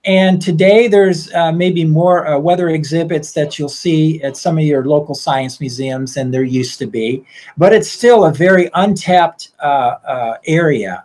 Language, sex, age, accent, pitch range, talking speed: English, male, 50-69, American, 130-170 Hz, 180 wpm